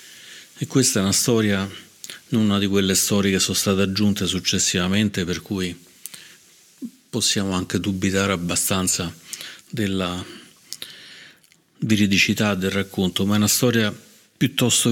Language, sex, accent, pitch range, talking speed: Italian, male, native, 95-105 Hz, 120 wpm